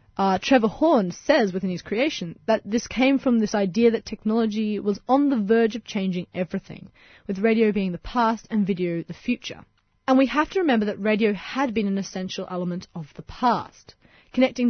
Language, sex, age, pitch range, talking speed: English, female, 20-39, 190-235 Hz, 190 wpm